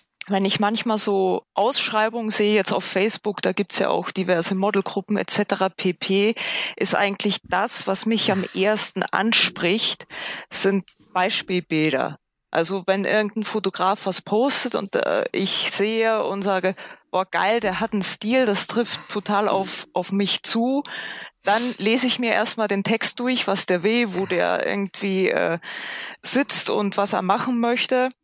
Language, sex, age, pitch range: German, female, 20-39, 190-225 Hz